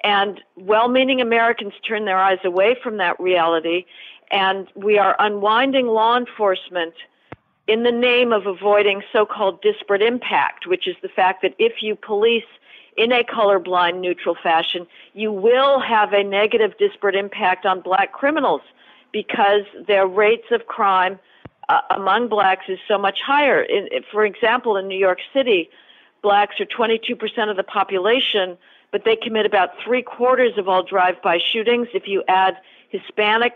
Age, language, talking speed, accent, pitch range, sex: 50-69, English, 150 wpm, American, 190-240 Hz, female